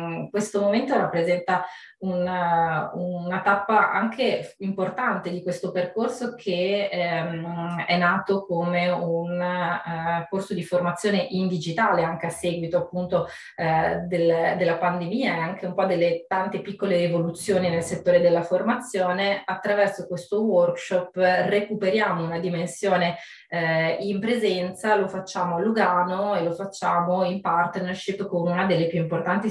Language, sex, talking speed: Italian, female, 135 wpm